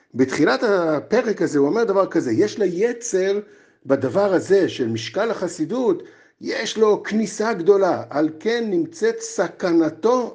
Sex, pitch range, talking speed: male, 175-280 Hz, 130 wpm